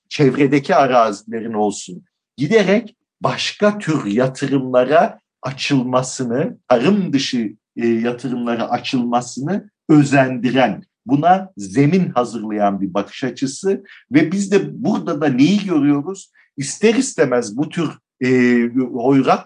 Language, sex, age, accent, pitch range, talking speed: Turkish, male, 50-69, native, 125-155 Hz, 100 wpm